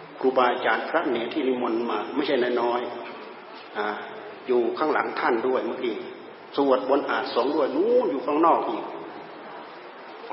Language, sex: Thai, male